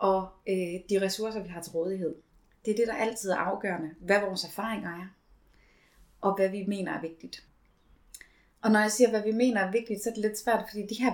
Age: 30-49